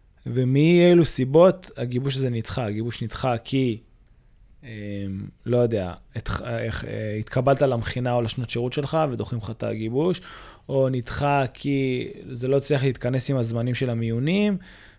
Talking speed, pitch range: 140 wpm, 120-155 Hz